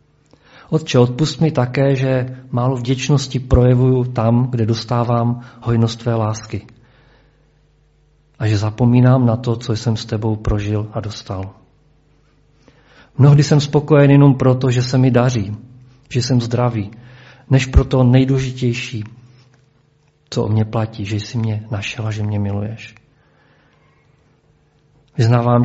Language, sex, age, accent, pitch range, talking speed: Czech, male, 40-59, native, 110-130 Hz, 125 wpm